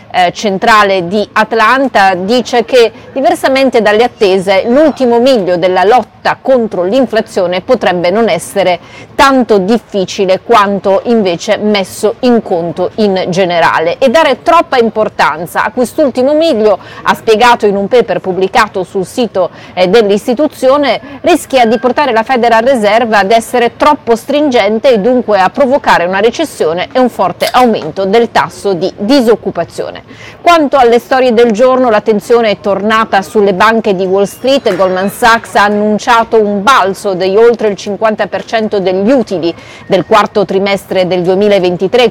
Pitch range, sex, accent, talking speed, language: 195-245 Hz, female, native, 135 wpm, Italian